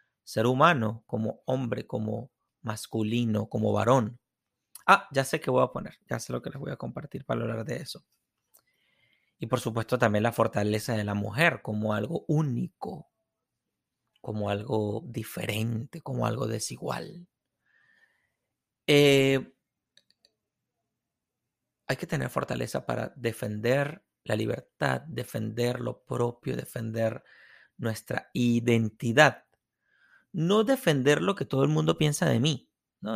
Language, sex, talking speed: Spanish, male, 130 wpm